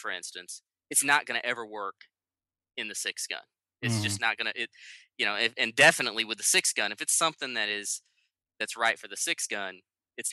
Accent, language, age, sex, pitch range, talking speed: American, English, 20-39, male, 90-115 Hz, 215 wpm